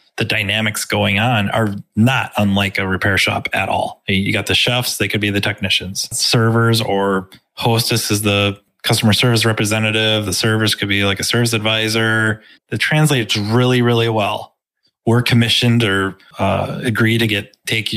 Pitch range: 100-120 Hz